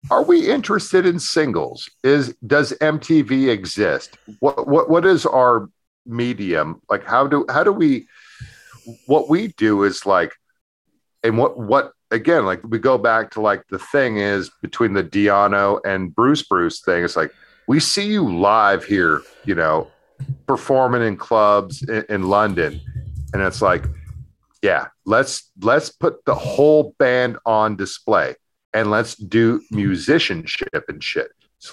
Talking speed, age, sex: 150 wpm, 50-69, male